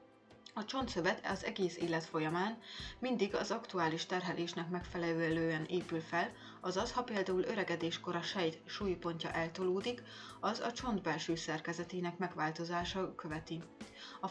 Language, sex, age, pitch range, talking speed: Hungarian, female, 30-49, 165-205 Hz, 115 wpm